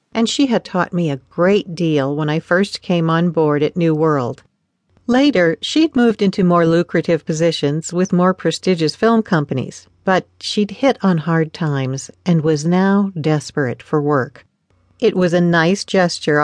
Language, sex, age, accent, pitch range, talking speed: English, female, 50-69, American, 160-210 Hz, 170 wpm